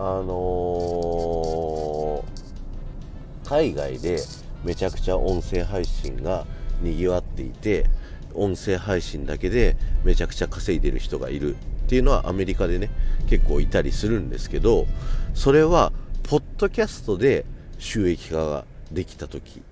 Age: 40-59